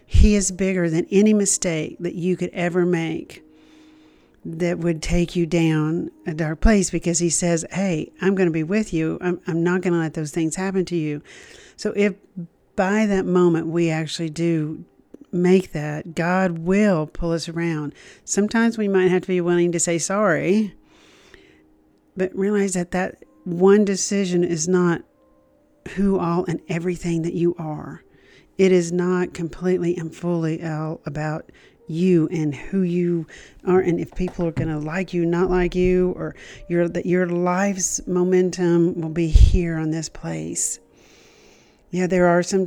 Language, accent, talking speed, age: English, American, 170 wpm, 50-69